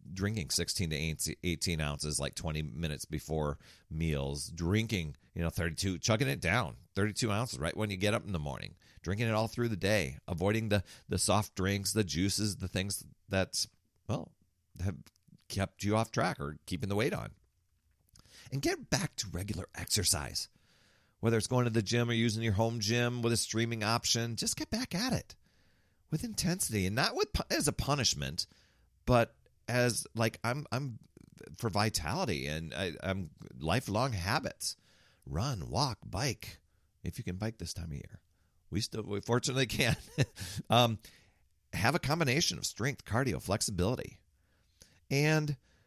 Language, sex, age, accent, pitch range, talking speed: English, male, 40-59, American, 85-110 Hz, 165 wpm